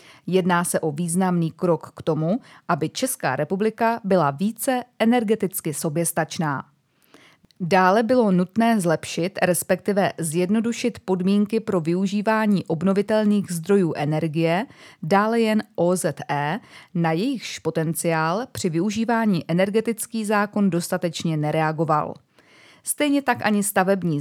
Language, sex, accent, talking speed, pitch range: Czech, female, native, 105 wpm, 165-210 Hz